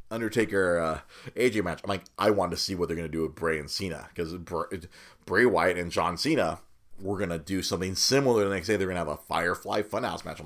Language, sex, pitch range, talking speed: English, male, 95-130 Hz, 250 wpm